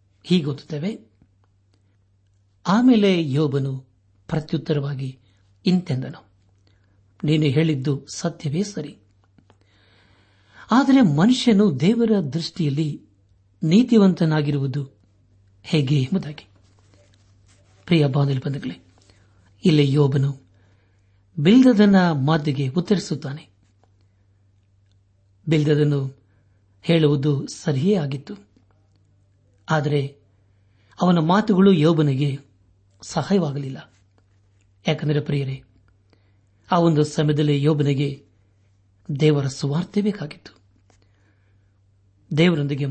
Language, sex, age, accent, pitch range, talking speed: Kannada, male, 60-79, native, 100-160 Hz, 55 wpm